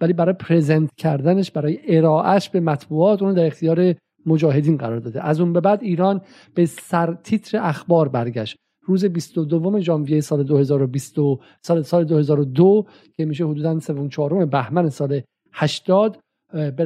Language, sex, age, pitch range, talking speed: Persian, male, 50-69, 155-190 Hz, 140 wpm